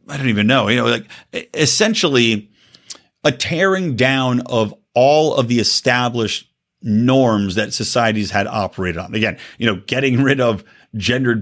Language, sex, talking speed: English, male, 150 wpm